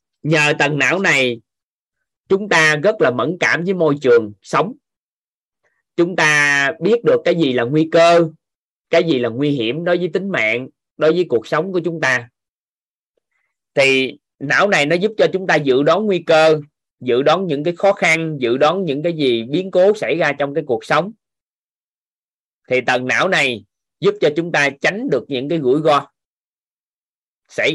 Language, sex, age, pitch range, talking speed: Vietnamese, male, 20-39, 125-170 Hz, 185 wpm